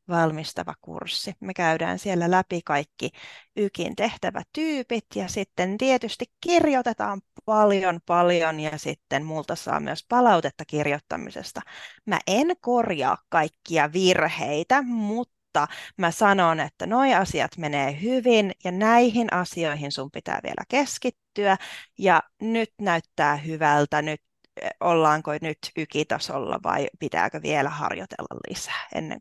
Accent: native